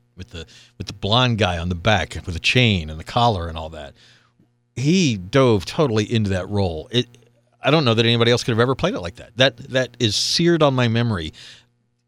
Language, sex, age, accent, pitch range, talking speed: English, male, 50-69, American, 95-120 Hz, 225 wpm